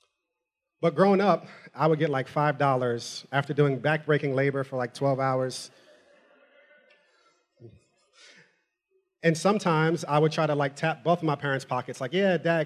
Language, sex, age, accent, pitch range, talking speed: English, male, 30-49, American, 145-170 Hz, 150 wpm